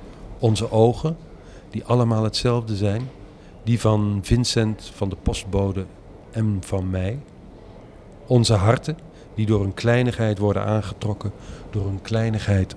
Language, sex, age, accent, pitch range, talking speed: Dutch, male, 50-69, Dutch, 100-115 Hz, 120 wpm